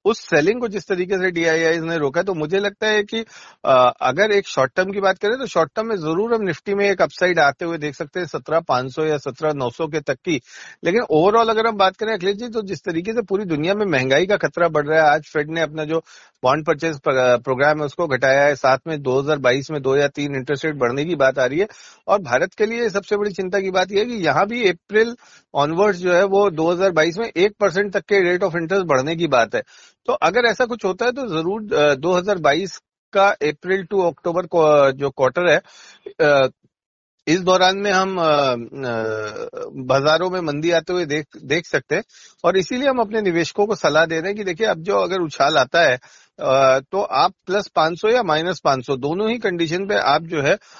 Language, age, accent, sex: Hindi, 40-59, native, male